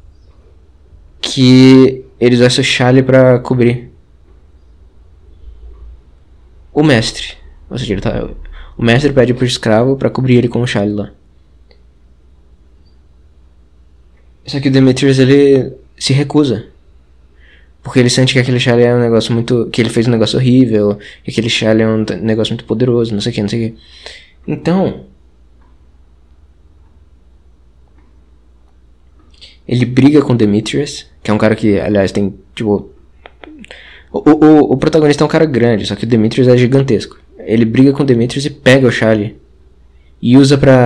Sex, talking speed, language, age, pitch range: male, 150 wpm, Portuguese, 20-39, 75-130 Hz